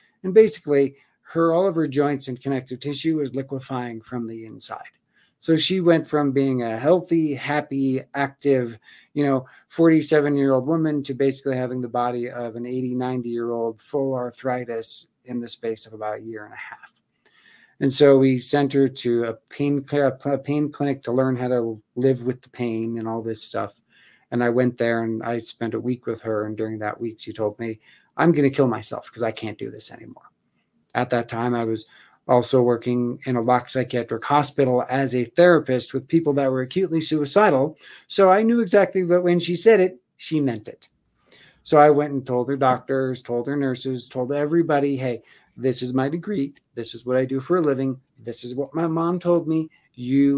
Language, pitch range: English, 120-145 Hz